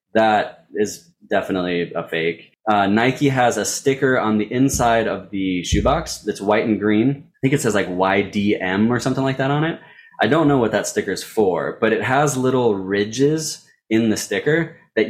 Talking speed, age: 200 wpm, 20-39